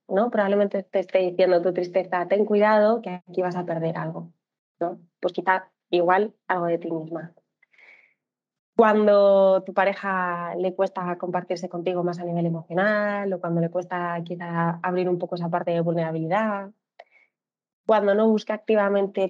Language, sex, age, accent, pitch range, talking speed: Spanish, female, 20-39, Spanish, 175-205 Hz, 160 wpm